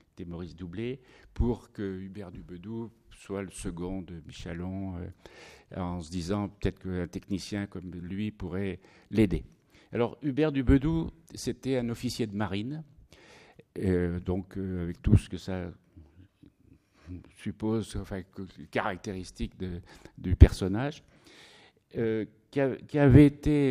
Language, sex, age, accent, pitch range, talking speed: French, male, 60-79, French, 95-120 Hz, 120 wpm